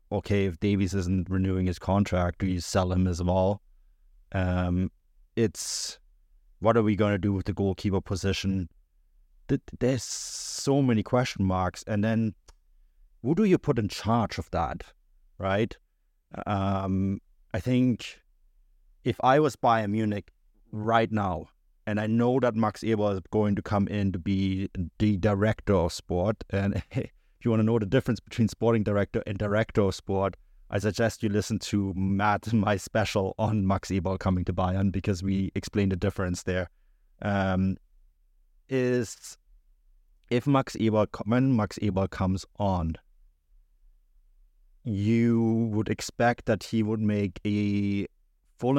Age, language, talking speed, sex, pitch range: 30-49, English, 150 wpm, male, 95-110 Hz